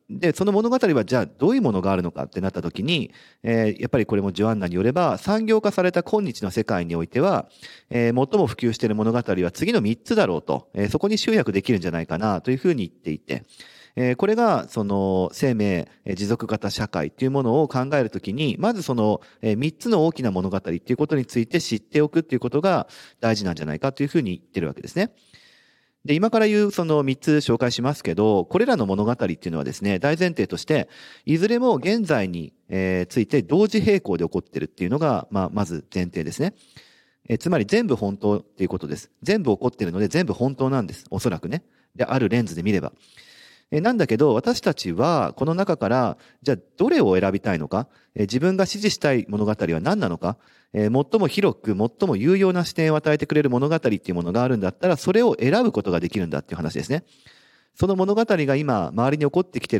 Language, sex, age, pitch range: Japanese, male, 40-59, 100-170 Hz